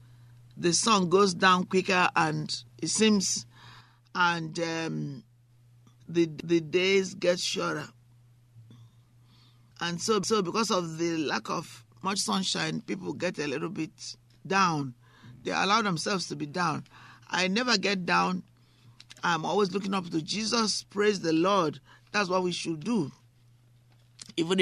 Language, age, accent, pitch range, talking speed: English, 50-69, Nigerian, 120-180 Hz, 135 wpm